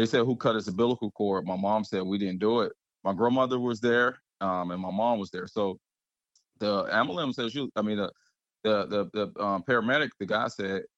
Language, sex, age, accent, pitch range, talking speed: English, male, 20-39, American, 95-110 Hz, 220 wpm